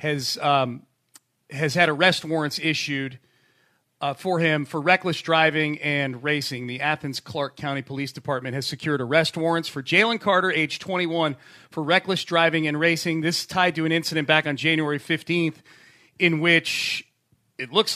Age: 40-59